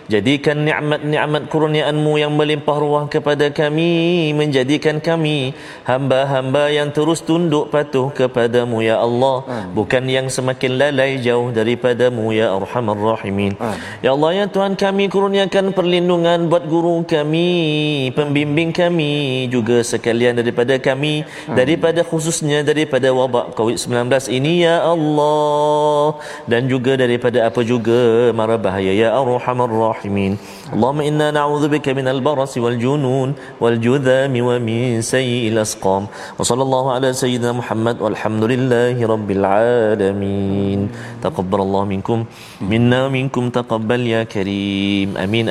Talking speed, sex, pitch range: 110 wpm, male, 110-150 Hz